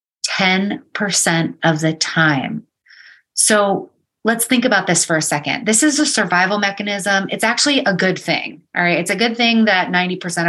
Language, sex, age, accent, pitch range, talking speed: English, female, 30-49, American, 170-210 Hz, 165 wpm